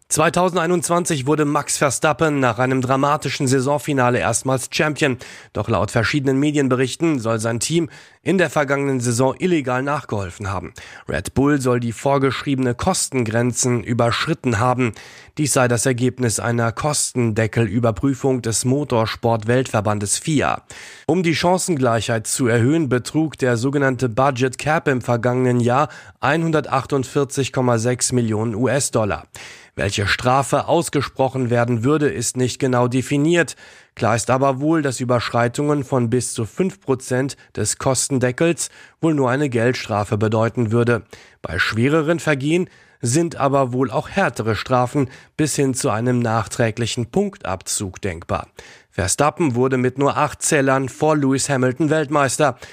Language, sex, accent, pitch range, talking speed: German, male, German, 120-150 Hz, 125 wpm